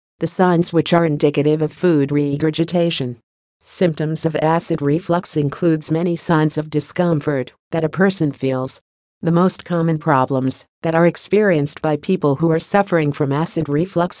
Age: 50-69